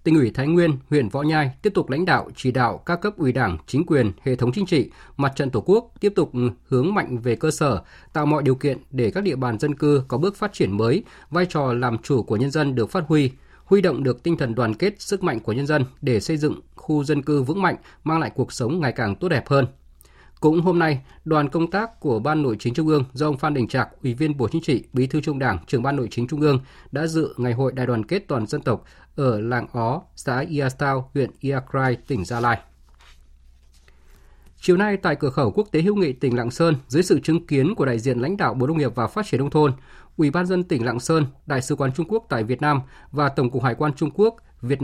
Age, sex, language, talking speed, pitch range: 20-39, male, Vietnamese, 255 wpm, 125-155 Hz